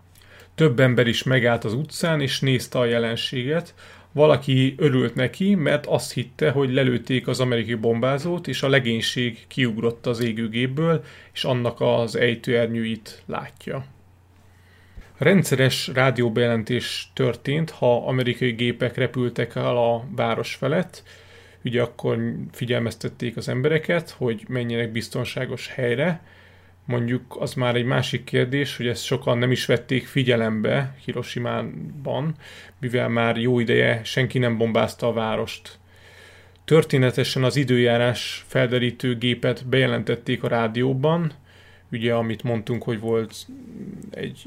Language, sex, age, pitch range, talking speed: Hungarian, male, 30-49, 115-130 Hz, 120 wpm